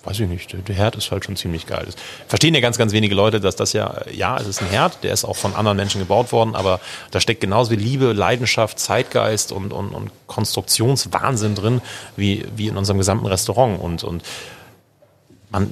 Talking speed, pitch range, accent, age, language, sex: 210 wpm, 95-115 Hz, German, 30-49, German, male